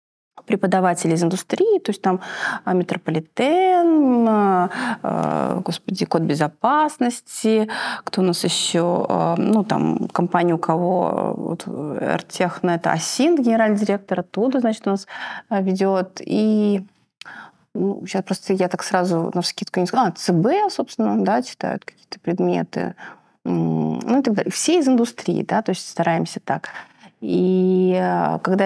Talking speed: 135 wpm